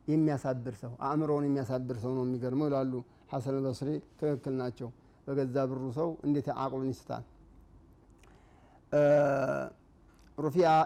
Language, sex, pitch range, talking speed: Amharic, male, 130-150 Hz, 75 wpm